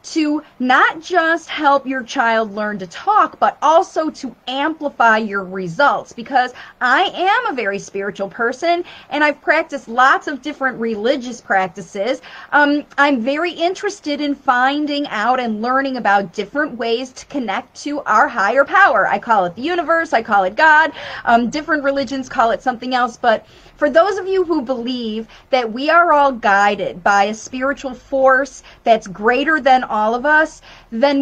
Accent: American